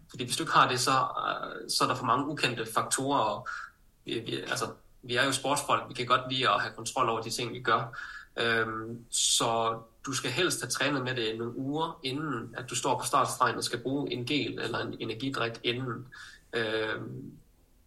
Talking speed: 205 wpm